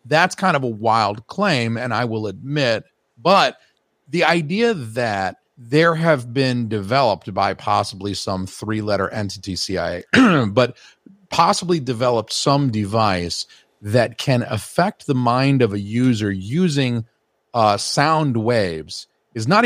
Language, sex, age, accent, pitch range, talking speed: English, male, 40-59, American, 110-155 Hz, 130 wpm